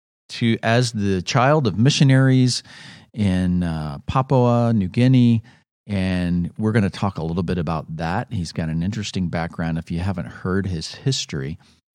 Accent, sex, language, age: American, male, English, 40-59